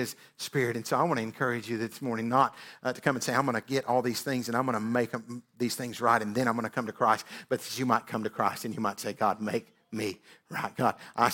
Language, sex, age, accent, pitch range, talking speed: English, male, 50-69, American, 105-120 Hz, 290 wpm